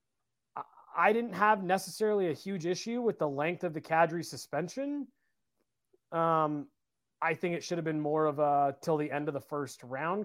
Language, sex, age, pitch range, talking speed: English, male, 30-49, 155-220 Hz, 180 wpm